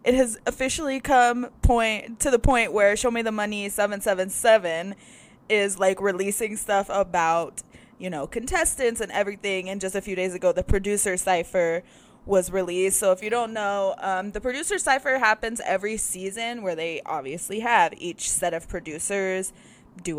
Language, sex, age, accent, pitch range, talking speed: English, female, 20-39, American, 170-210 Hz, 165 wpm